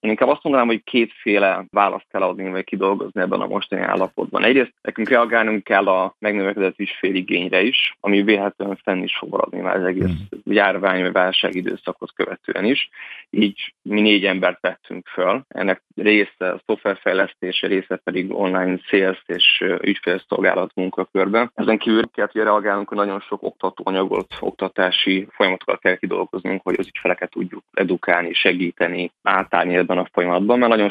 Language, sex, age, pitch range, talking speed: Hungarian, male, 20-39, 95-105 Hz, 150 wpm